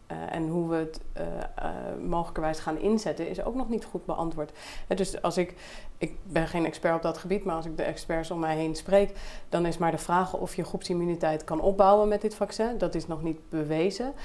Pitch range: 160-195 Hz